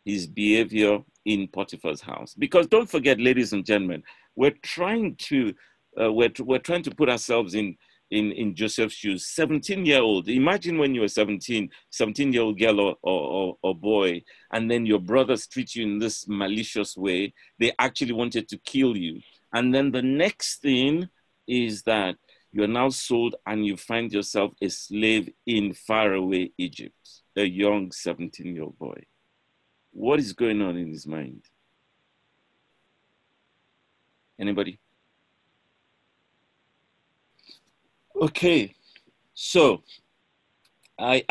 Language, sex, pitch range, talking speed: English, male, 95-125 Hz, 130 wpm